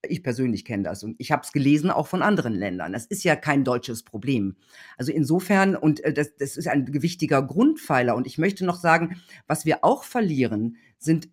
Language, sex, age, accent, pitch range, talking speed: German, female, 50-69, German, 135-190 Hz, 200 wpm